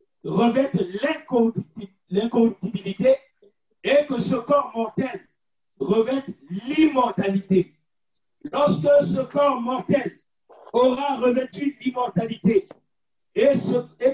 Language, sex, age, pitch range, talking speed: French, male, 50-69, 185-245 Hz, 80 wpm